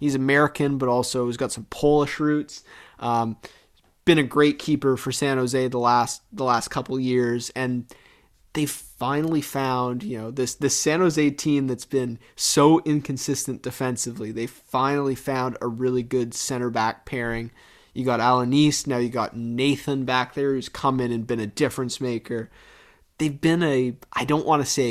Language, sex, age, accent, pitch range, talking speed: English, male, 30-49, American, 120-140 Hz, 180 wpm